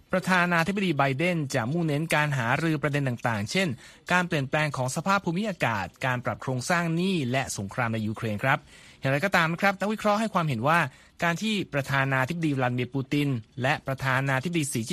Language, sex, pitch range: Thai, male, 130-175 Hz